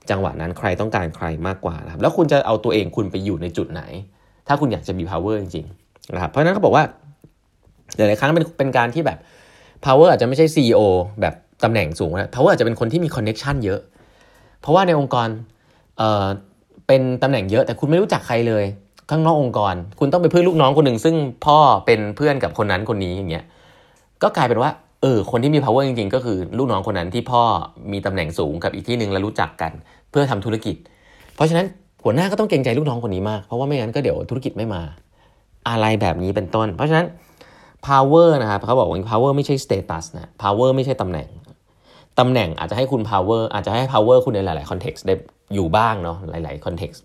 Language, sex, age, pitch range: Thai, male, 20-39, 95-130 Hz